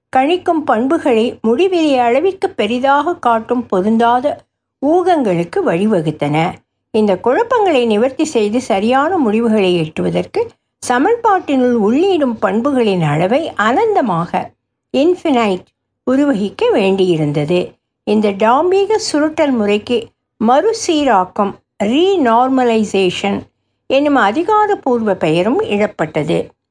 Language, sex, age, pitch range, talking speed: Tamil, female, 60-79, 200-300 Hz, 75 wpm